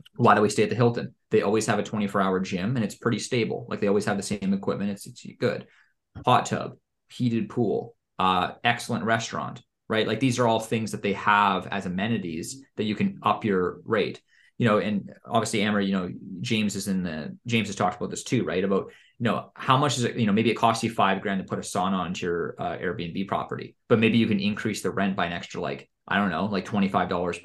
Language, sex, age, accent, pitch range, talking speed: English, male, 20-39, American, 95-115 Hz, 240 wpm